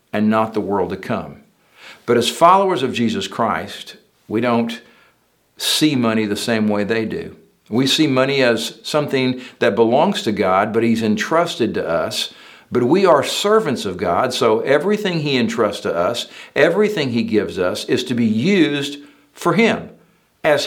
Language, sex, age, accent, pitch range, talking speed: English, male, 60-79, American, 110-155 Hz, 170 wpm